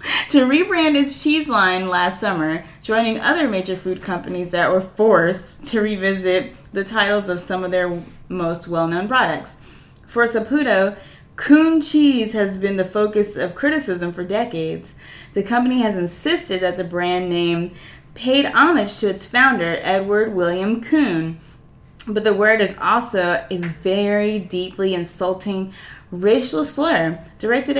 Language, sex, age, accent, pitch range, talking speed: English, female, 20-39, American, 180-235 Hz, 140 wpm